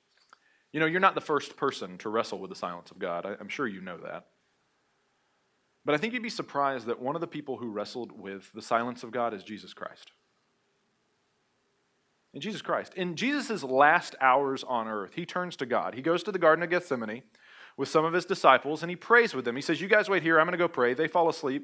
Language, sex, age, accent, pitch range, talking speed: English, male, 30-49, American, 135-190 Hz, 235 wpm